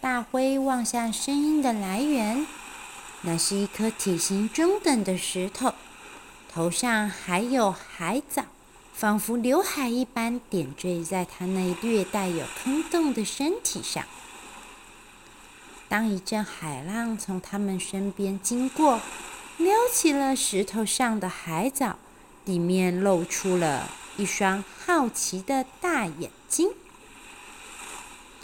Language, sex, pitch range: Chinese, female, 185-275 Hz